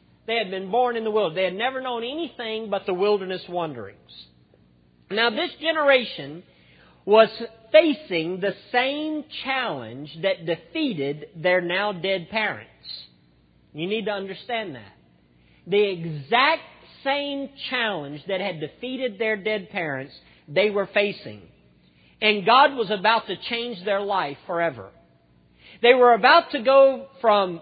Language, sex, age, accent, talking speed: English, male, 50-69, American, 135 wpm